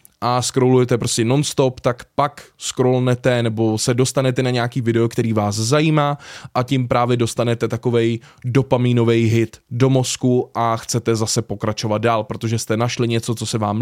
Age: 20-39